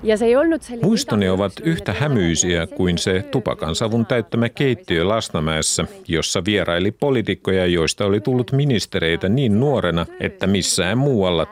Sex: male